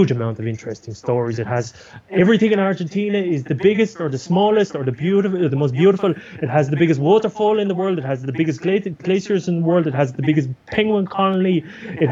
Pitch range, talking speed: 130-180 Hz, 225 wpm